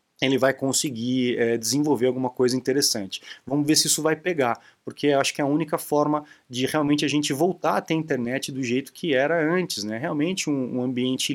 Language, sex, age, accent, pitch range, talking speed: Portuguese, male, 20-39, Brazilian, 125-155 Hz, 205 wpm